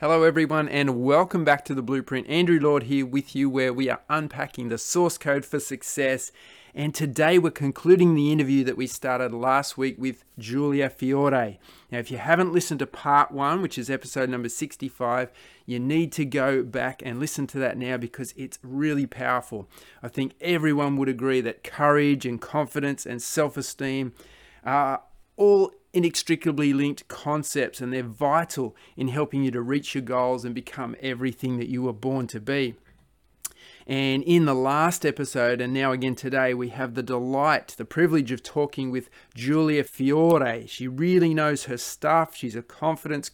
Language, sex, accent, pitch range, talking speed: English, male, Australian, 130-150 Hz, 175 wpm